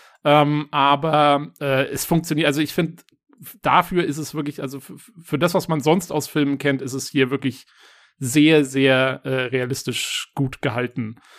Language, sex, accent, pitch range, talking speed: German, male, German, 140-165 Hz, 170 wpm